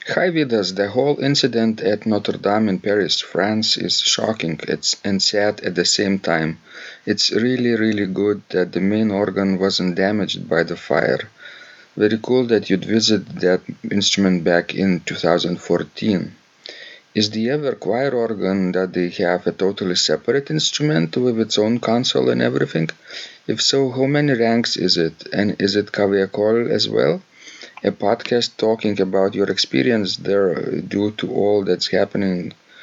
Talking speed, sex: 155 wpm, male